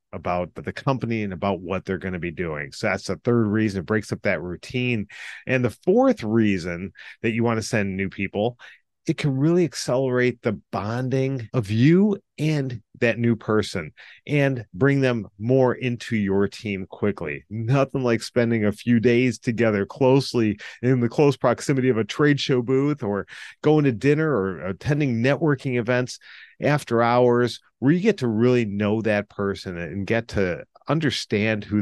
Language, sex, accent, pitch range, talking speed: English, male, American, 100-135 Hz, 175 wpm